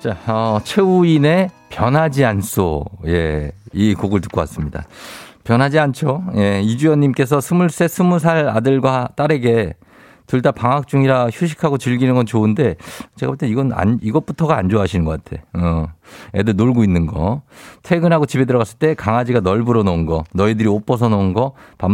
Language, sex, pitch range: Korean, male, 95-140 Hz